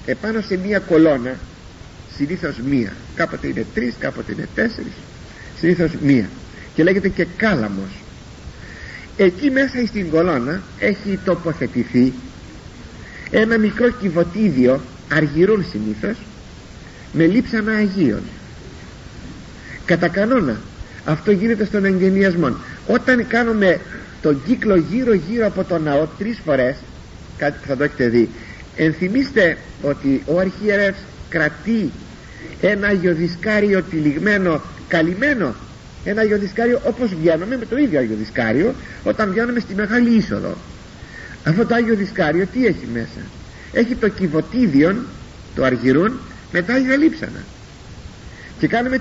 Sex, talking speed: male, 115 wpm